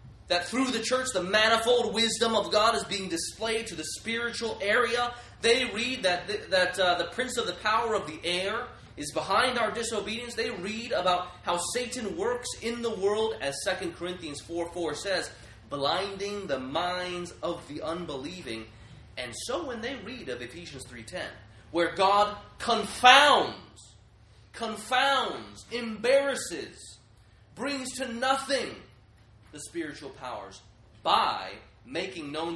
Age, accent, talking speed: 30-49, American, 140 wpm